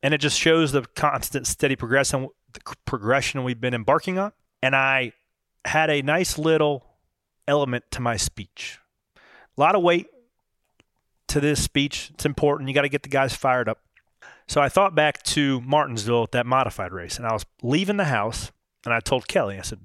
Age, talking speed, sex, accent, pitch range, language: 30-49, 185 wpm, male, American, 115-145 Hz, English